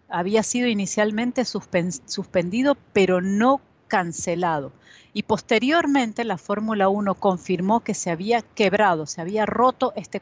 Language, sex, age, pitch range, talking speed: Spanish, female, 40-59, 185-230 Hz, 125 wpm